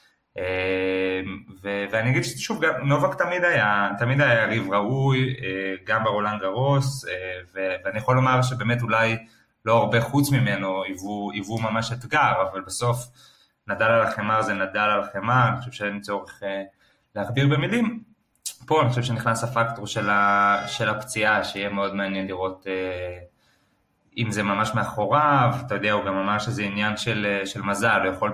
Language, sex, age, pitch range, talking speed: Hebrew, male, 20-39, 100-125 Hz, 150 wpm